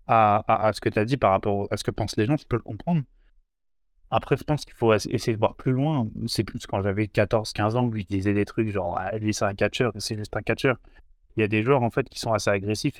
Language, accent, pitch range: French, French, 100-115 Hz